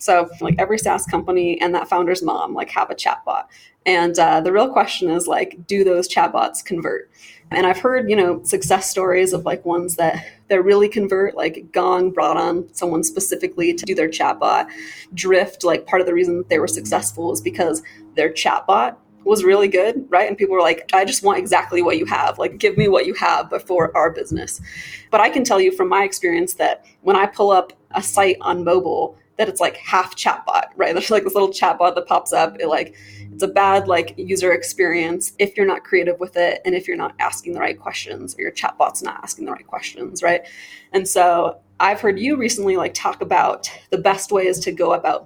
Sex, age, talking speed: female, 20-39, 215 wpm